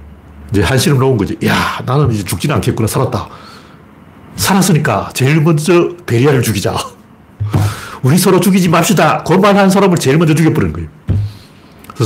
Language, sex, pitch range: Korean, male, 105-175 Hz